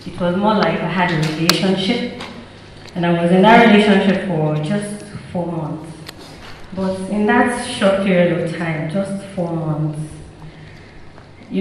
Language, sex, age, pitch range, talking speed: English, female, 30-49, 175-230 Hz, 150 wpm